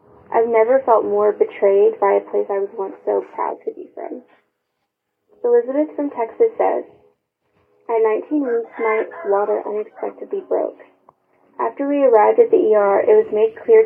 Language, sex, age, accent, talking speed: English, female, 20-39, American, 160 wpm